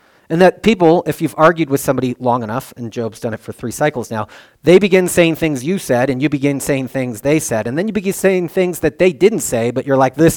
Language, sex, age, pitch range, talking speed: English, male, 40-59, 115-150 Hz, 260 wpm